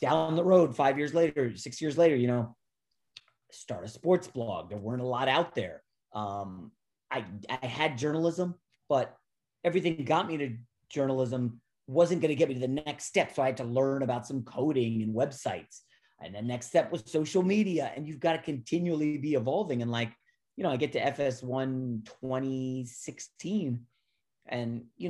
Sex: male